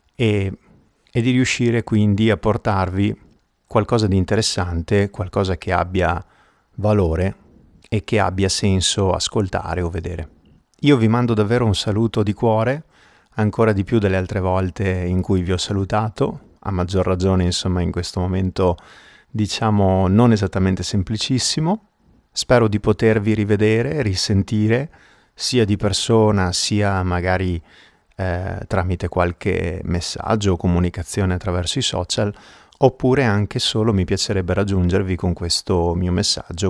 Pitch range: 90-110 Hz